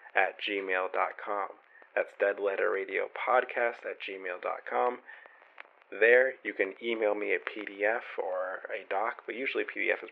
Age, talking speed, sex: 30-49, 125 wpm, male